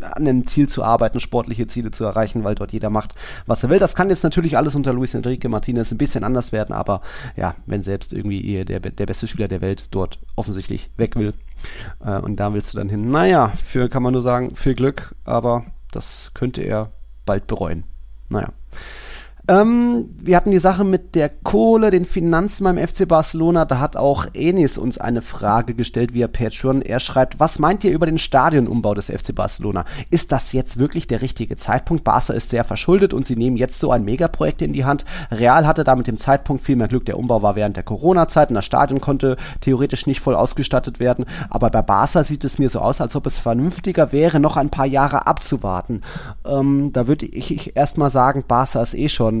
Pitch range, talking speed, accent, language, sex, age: 115-150 Hz, 210 wpm, German, German, male, 30-49